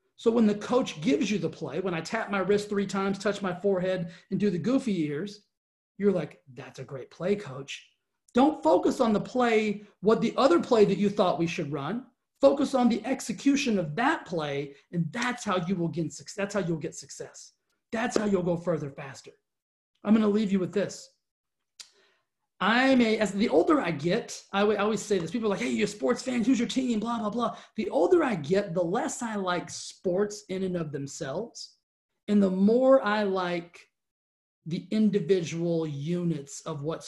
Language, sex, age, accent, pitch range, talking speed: English, male, 30-49, American, 165-220 Hz, 205 wpm